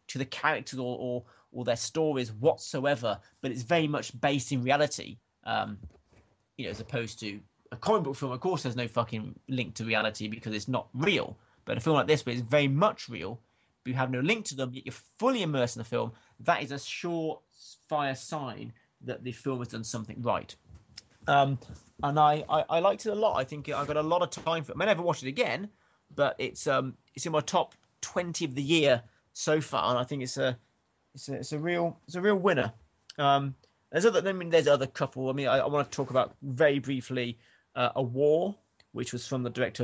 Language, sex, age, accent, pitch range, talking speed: English, male, 30-49, British, 120-150 Hz, 230 wpm